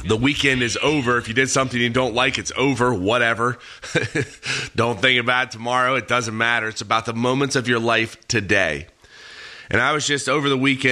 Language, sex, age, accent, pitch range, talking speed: English, male, 30-49, American, 105-130 Hz, 205 wpm